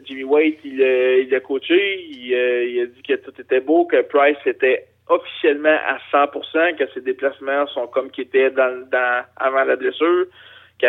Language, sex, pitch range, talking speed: French, male, 140-190 Hz, 195 wpm